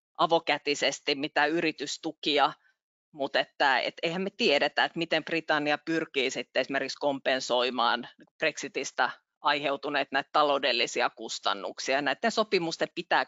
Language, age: Finnish, 30-49